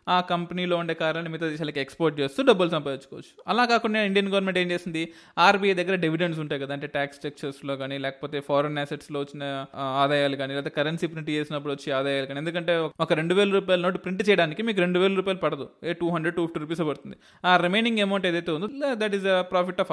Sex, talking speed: male, 195 wpm